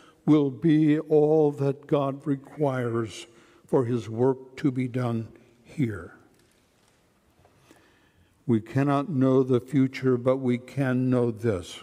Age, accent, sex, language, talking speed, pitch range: 60-79, American, male, English, 115 wpm, 105-140 Hz